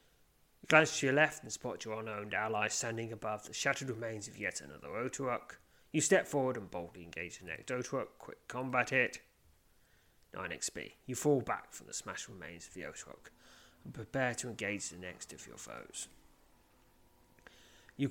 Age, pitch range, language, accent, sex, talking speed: 30-49, 105-145 Hz, English, British, male, 175 wpm